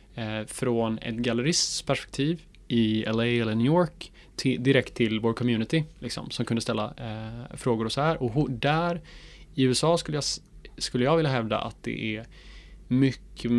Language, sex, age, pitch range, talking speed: Swedish, male, 20-39, 110-130 Hz, 165 wpm